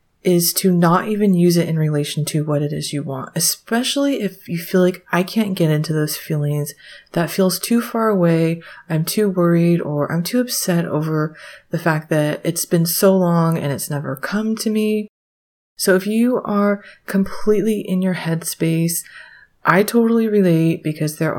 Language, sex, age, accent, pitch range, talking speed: English, female, 30-49, American, 155-200 Hz, 180 wpm